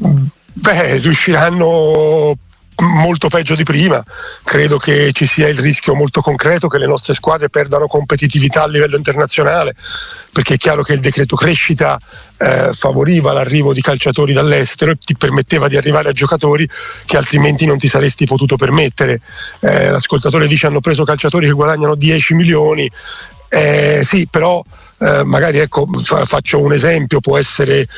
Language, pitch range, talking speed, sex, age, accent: Italian, 145-160 Hz, 155 wpm, male, 40-59, native